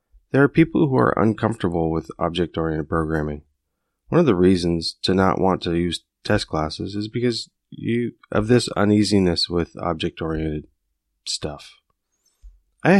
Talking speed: 140 wpm